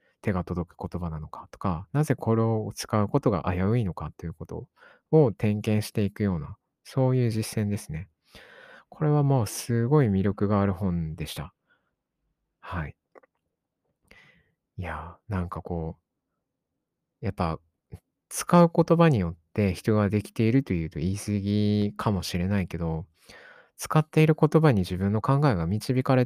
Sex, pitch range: male, 90-115 Hz